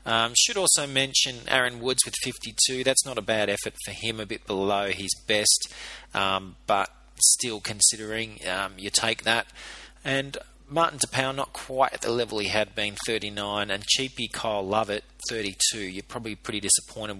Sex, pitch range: male, 95-110 Hz